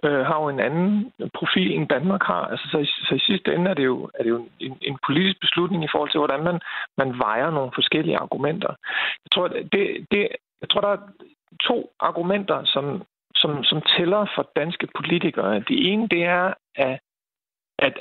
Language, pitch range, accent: Danish, 145-195 Hz, native